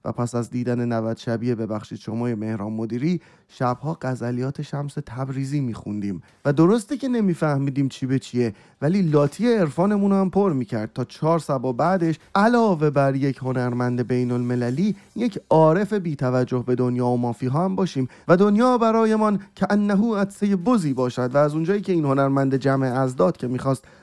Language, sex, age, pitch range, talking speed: Persian, male, 30-49, 130-180 Hz, 160 wpm